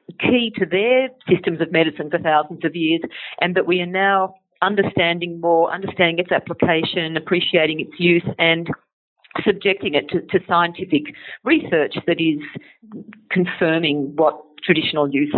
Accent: Australian